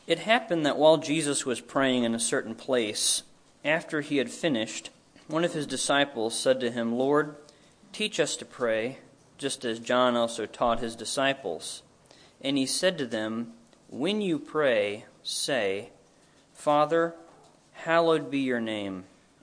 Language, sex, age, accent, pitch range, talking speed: English, male, 40-59, American, 115-155 Hz, 150 wpm